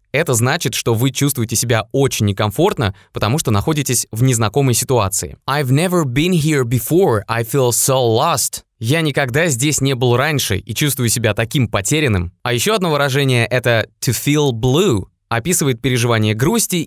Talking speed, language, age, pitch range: 160 wpm, Russian, 20-39, 115-150 Hz